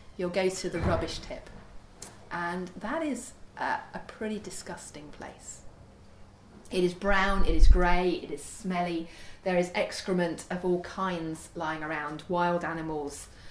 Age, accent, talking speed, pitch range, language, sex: 30-49, British, 145 wpm, 150-195 Hz, English, female